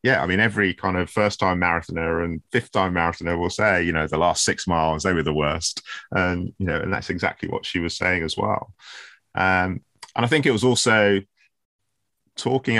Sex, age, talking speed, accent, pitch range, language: male, 30-49, 200 wpm, British, 80-100 Hz, English